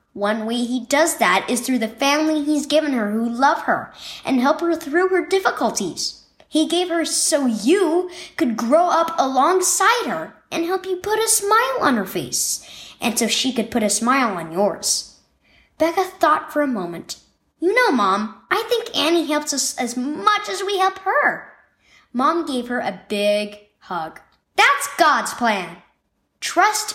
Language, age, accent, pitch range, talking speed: English, 10-29, American, 230-335 Hz, 175 wpm